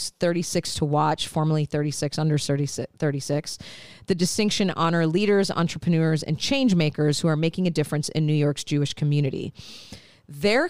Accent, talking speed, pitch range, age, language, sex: American, 150 wpm, 155-220 Hz, 40-59, English, female